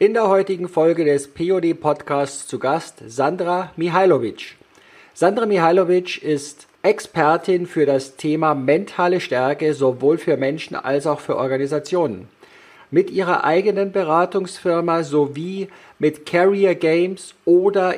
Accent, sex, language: German, male, German